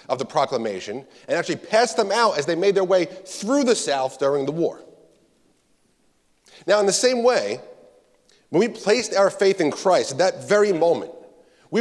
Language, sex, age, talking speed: English, male, 30-49, 185 wpm